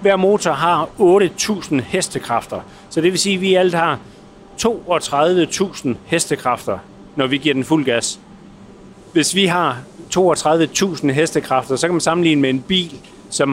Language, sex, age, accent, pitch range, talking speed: Danish, male, 40-59, native, 130-175 Hz, 150 wpm